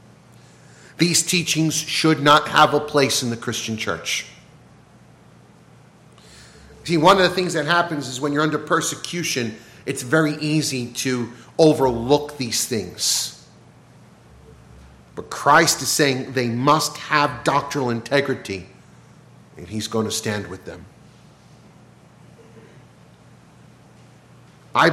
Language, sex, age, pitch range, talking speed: English, male, 40-59, 110-150 Hz, 115 wpm